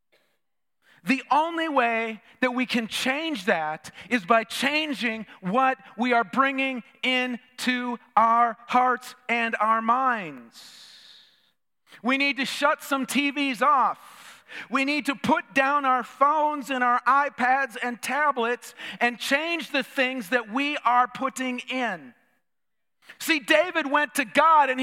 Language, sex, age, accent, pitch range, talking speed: English, male, 40-59, American, 245-295 Hz, 135 wpm